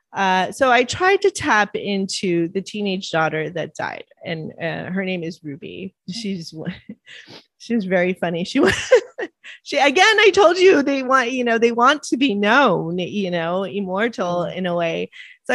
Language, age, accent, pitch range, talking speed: English, 30-49, American, 170-230 Hz, 175 wpm